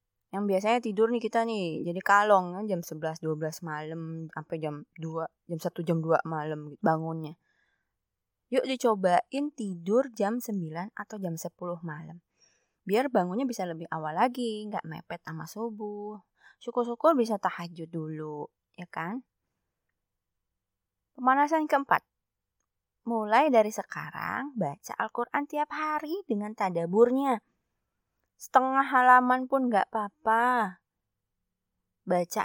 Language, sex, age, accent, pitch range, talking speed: Indonesian, female, 20-39, native, 165-240 Hz, 115 wpm